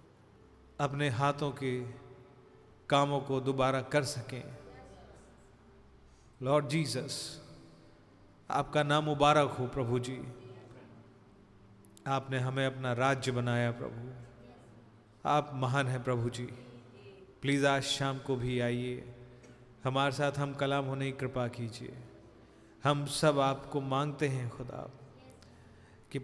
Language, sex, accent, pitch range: Hindi, male, native, 125-145 Hz